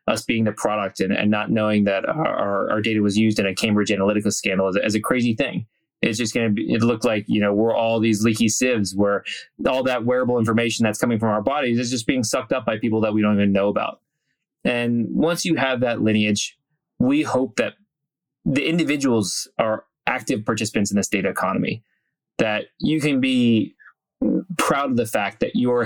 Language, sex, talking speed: English, male, 210 wpm